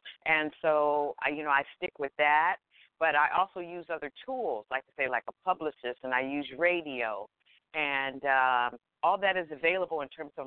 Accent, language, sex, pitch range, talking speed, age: American, English, female, 130-150 Hz, 190 wpm, 50-69